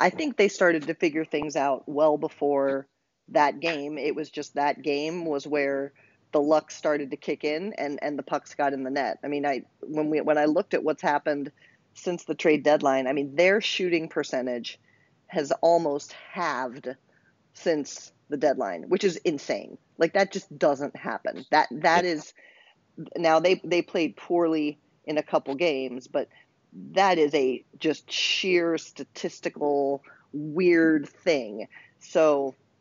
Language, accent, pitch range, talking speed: English, American, 145-170 Hz, 165 wpm